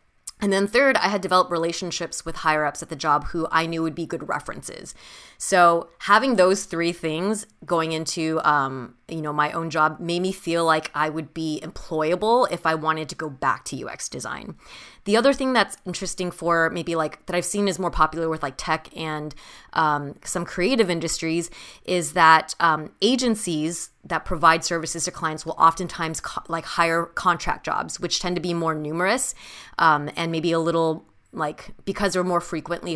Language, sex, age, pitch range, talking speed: English, female, 20-39, 155-180 Hz, 185 wpm